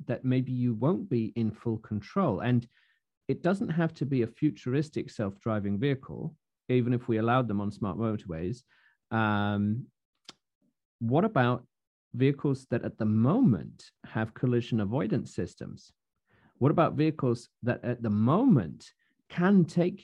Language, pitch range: English, 110-150 Hz